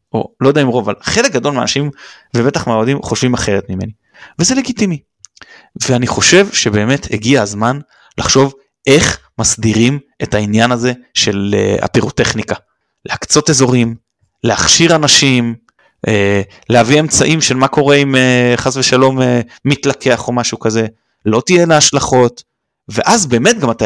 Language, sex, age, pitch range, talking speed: Hebrew, male, 30-49, 120-160 Hz, 140 wpm